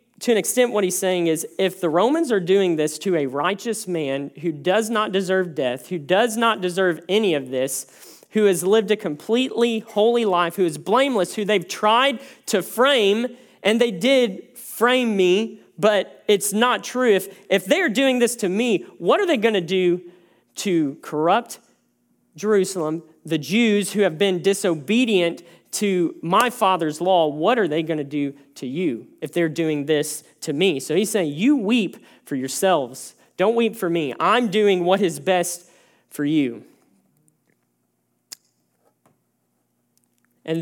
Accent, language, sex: American, English, male